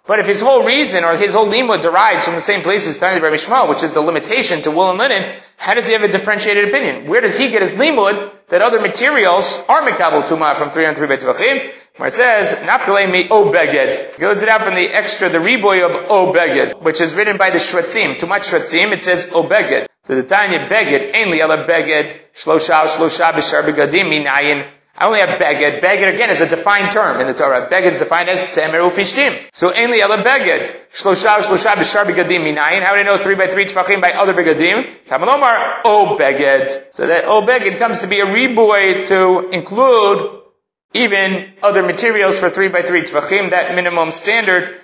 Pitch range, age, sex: 165-205 Hz, 30-49, male